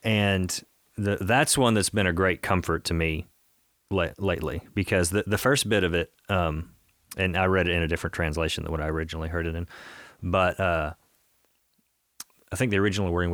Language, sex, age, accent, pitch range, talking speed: English, male, 30-49, American, 85-100 Hz, 195 wpm